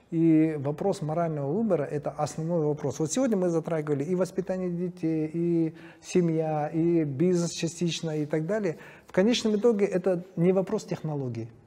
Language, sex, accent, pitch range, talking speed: Russian, male, native, 140-175 Hz, 150 wpm